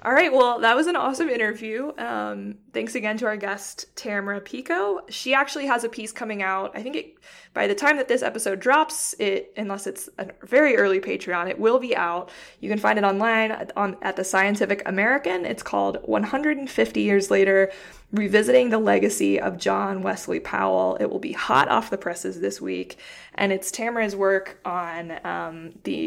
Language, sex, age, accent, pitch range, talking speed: English, female, 20-39, American, 180-230 Hz, 190 wpm